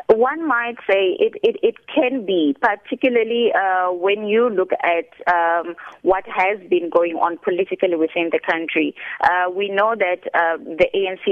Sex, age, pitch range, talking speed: female, 20-39, 165-210 Hz, 165 wpm